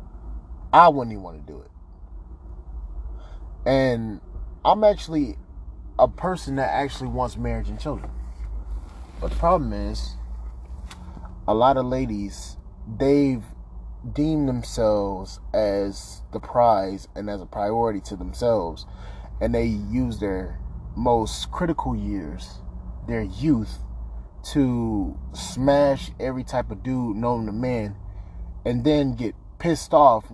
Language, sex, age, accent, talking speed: English, male, 20-39, American, 120 wpm